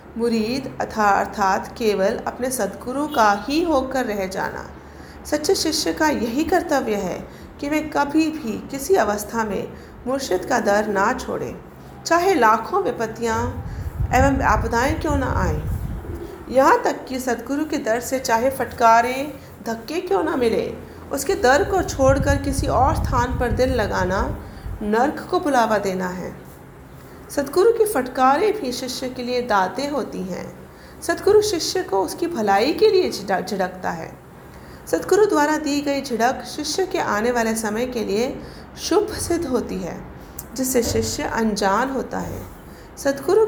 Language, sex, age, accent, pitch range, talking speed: Hindi, female, 40-59, native, 220-310 Hz, 145 wpm